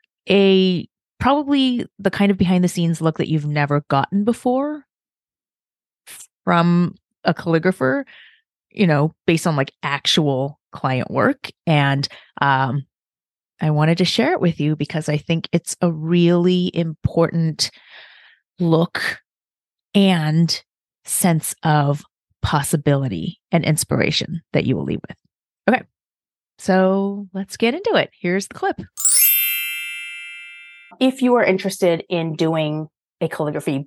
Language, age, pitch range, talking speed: English, 30-49, 150-215 Hz, 125 wpm